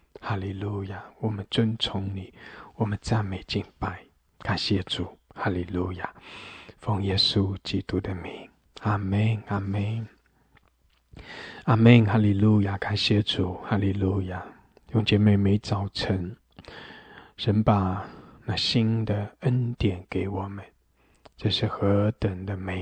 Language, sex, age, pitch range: English, male, 20-39, 95-115 Hz